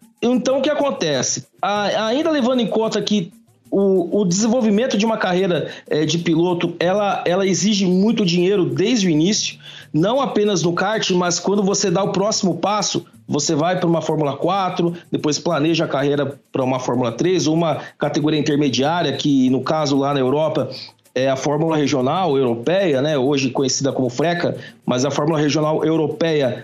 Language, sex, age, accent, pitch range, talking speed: Portuguese, male, 40-59, Brazilian, 160-205 Hz, 165 wpm